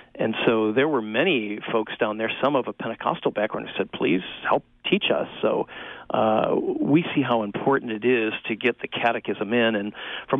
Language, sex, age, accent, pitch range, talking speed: English, male, 40-59, American, 110-135 Hz, 195 wpm